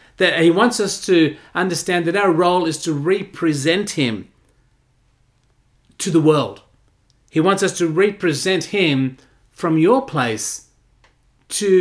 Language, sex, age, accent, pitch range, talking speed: English, male, 40-59, Australian, 120-160 Hz, 130 wpm